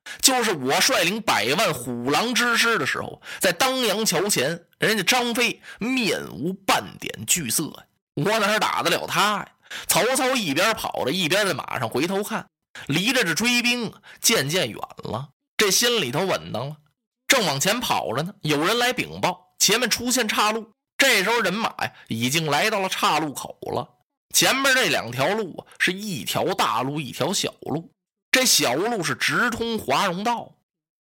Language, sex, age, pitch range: Chinese, male, 20-39, 165-240 Hz